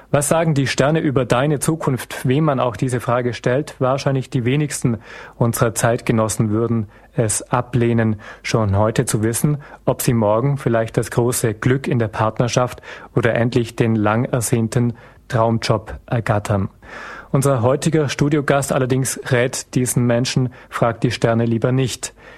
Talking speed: 145 wpm